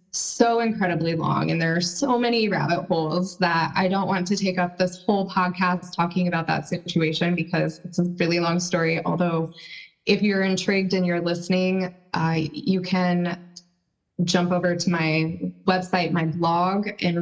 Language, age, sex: English, 20-39, female